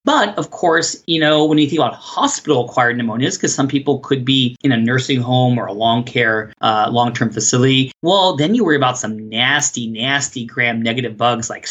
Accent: American